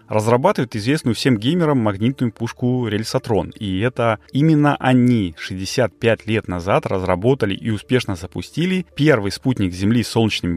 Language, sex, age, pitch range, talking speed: Russian, male, 30-49, 95-125 Hz, 130 wpm